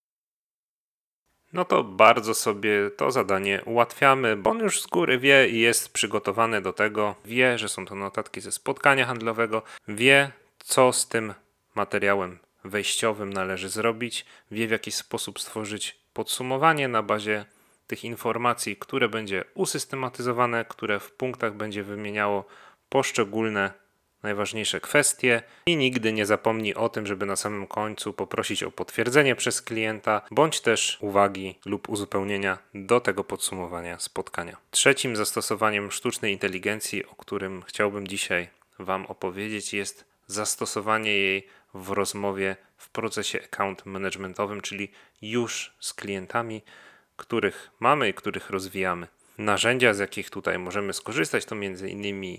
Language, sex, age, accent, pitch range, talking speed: Polish, male, 30-49, native, 100-115 Hz, 130 wpm